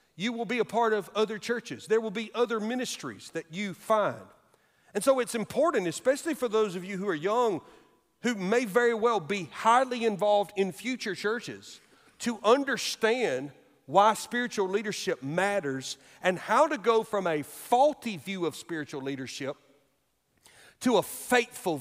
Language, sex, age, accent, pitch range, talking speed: English, male, 40-59, American, 165-245 Hz, 160 wpm